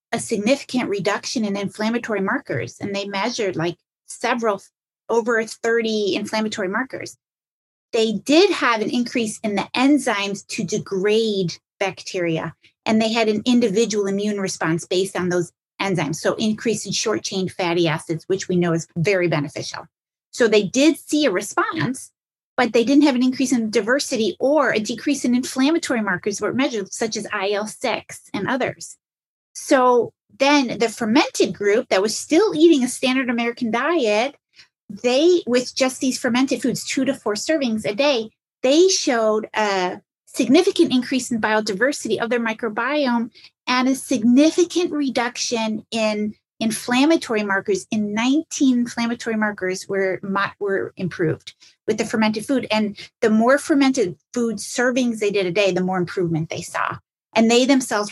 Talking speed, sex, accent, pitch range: 150 wpm, female, American, 200-260 Hz